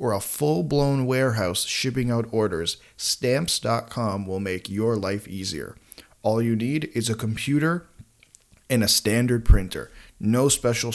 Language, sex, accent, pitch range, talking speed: English, male, American, 105-130 Hz, 135 wpm